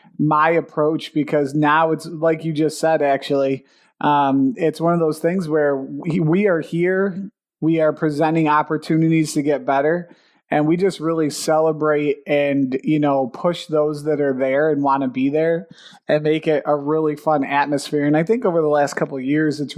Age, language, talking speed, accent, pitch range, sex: 30-49, English, 185 wpm, American, 145-165 Hz, male